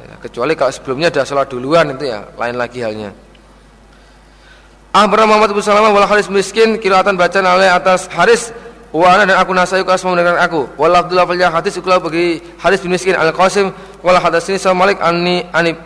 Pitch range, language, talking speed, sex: 160-190 Hz, Indonesian, 180 wpm, male